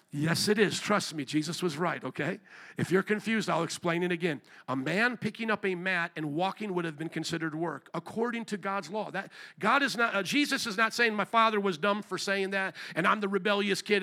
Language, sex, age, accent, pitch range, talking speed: English, male, 50-69, American, 185-235 Hz, 230 wpm